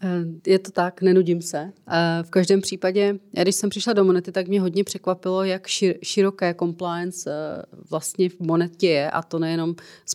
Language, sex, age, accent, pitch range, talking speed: Czech, female, 30-49, native, 160-180 Hz, 165 wpm